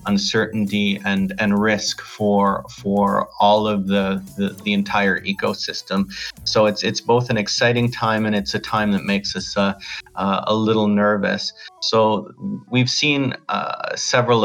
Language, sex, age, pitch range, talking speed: English, male, 40-59, 105-115 Hz, 155 wpm